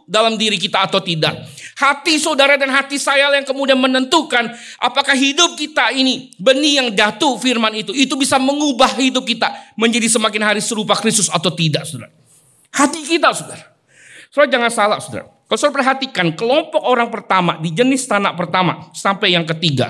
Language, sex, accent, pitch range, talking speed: Indonesian, male, native, 185-280 Hz, 165 wpm